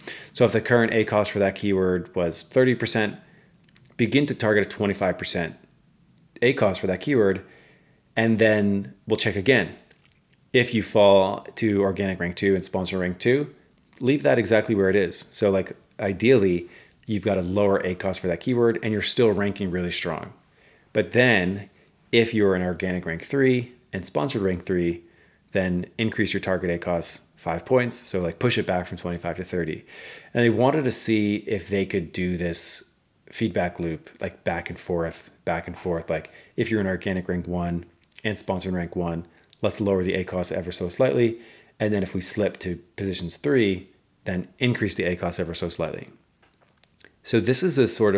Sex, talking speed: male, 185 wpm